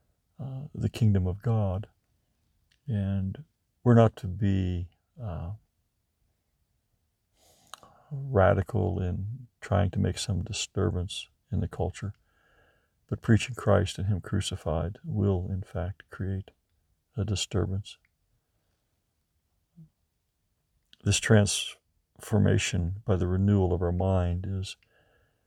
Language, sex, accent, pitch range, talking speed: English, male, American, 95-110 Hz, 100 wpm